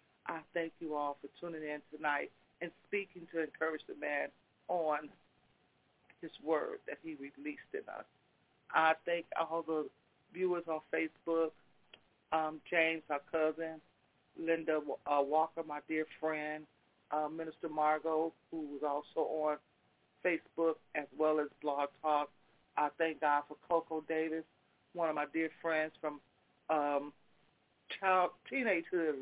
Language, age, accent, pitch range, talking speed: English, 40-59, American, 150-170 Hz, 135 wpm